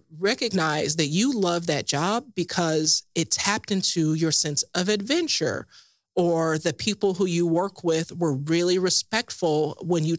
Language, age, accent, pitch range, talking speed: English, 30-49, American, 155-195 Hz, 155 wpm